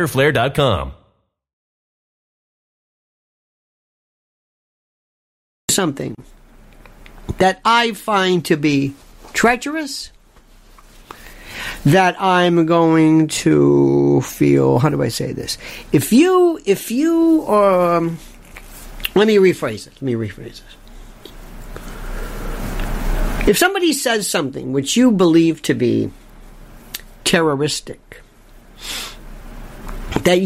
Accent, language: American, English